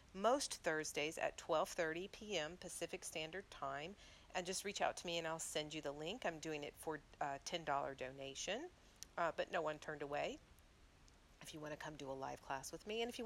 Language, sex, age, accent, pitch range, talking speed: English, female, 40-59, American, 145-170 Hz, 215 wpm